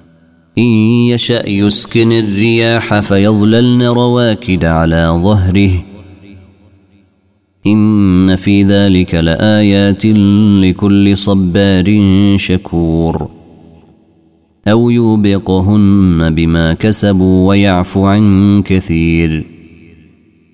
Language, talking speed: Arabic, 65 wpm